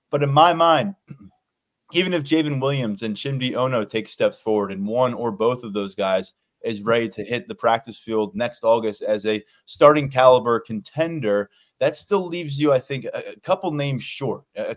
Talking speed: 185 wpm